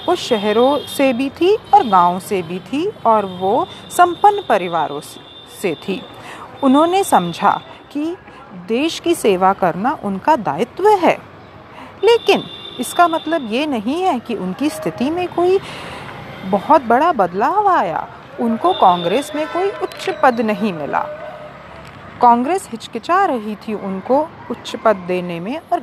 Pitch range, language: 195-310 Hz, English